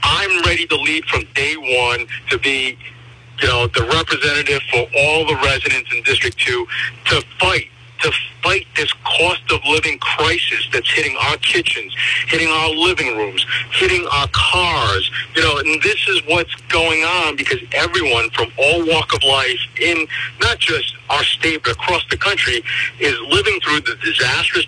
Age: 50-69